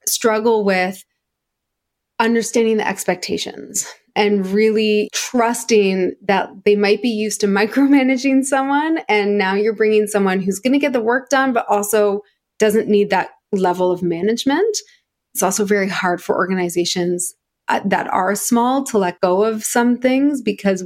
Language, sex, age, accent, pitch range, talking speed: English, female, 20-39, American, 190-260 Hz, 150 wpm